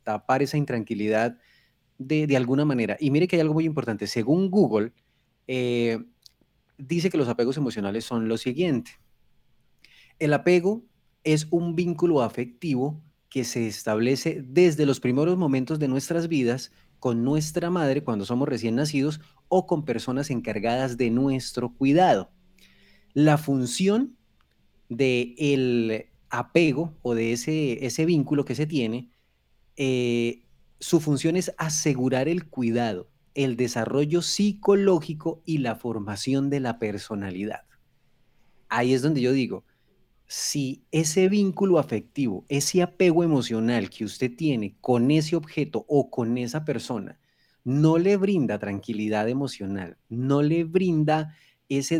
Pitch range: 120-155 Hz